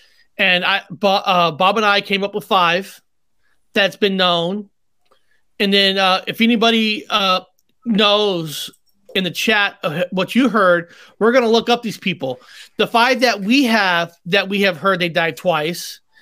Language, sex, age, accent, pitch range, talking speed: English, male, 30-49, American, 180-220 Hz, 165 wpm